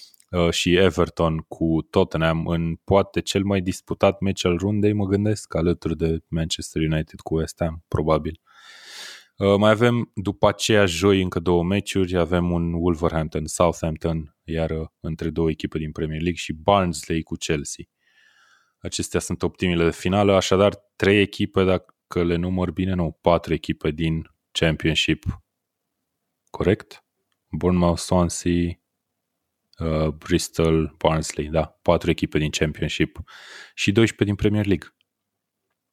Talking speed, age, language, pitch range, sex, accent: 130 wpm, 20-39, Romanian, 85-100 Hz, male, native